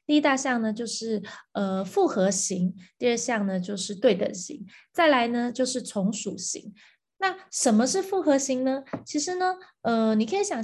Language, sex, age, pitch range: Chinese, female, 20-39, 200-270 Hz